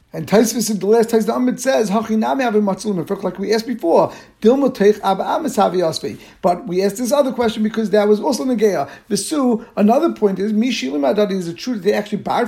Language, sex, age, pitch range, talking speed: English, male, 50-69, 195-235 Hz, 155 wpm